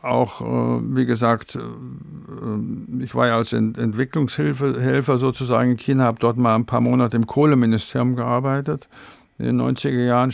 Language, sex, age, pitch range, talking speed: German, male, 50-69, 115-135 Hz, 140 wpm